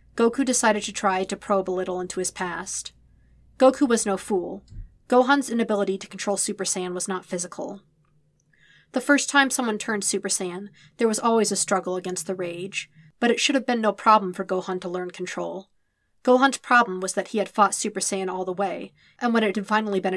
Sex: female